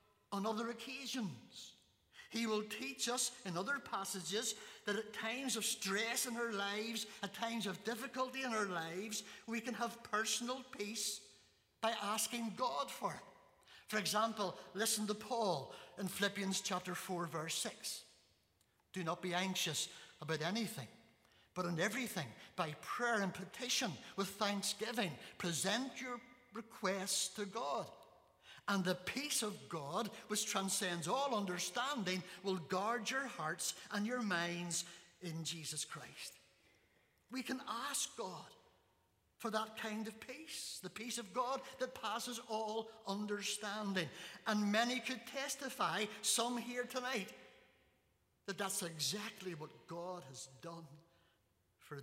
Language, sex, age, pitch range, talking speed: English, male, 60-79, 180-235 Hz, 135 wpm